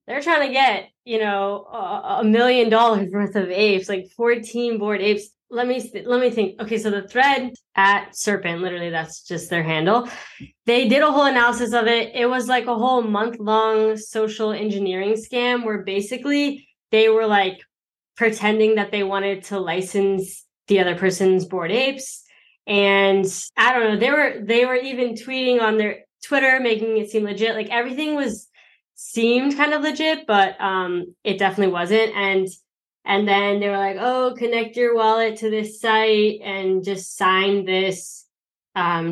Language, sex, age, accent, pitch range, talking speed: English, female, 20-39, American, 195-240 Hz, 175 wpm